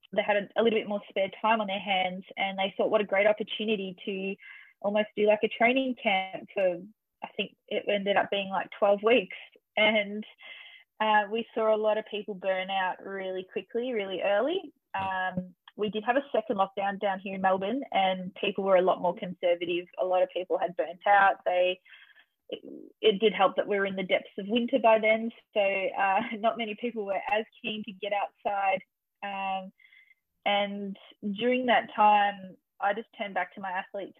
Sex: female